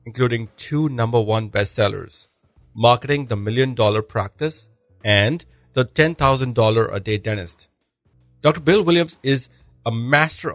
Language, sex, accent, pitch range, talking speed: English, male, Indian, 105-130 Hz, 125 wpm